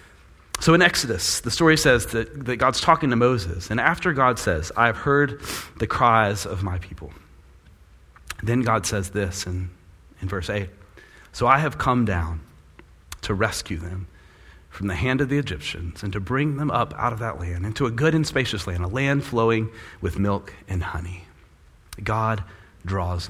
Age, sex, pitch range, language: 30-49, male, 90-115 Hz, English